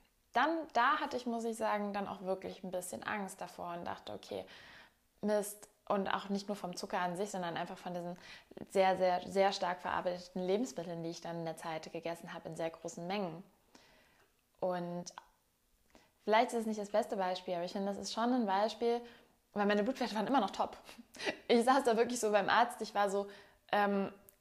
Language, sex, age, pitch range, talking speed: German, female, 20-39, 180-215 Hz, 200 wpm